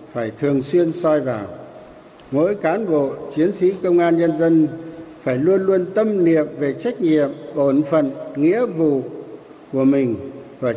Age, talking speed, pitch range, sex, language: 60-79, 160 wpm, 140-180 Hz, male, Vietnamese